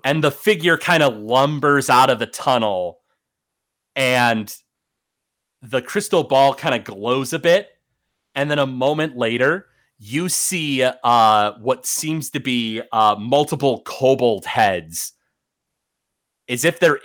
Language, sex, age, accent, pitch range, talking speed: English, male, 30-49, American, 120-175 Hz, 135 wpm